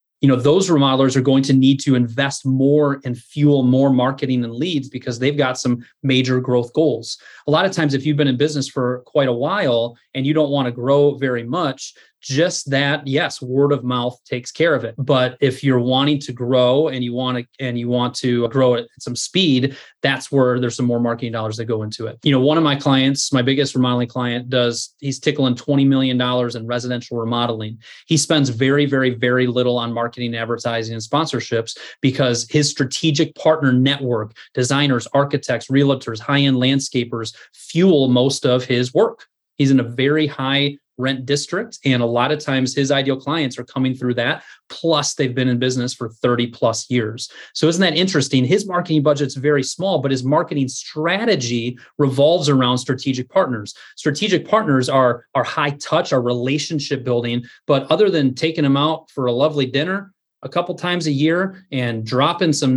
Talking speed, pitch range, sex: 195 wpm, 125-145 Hz, male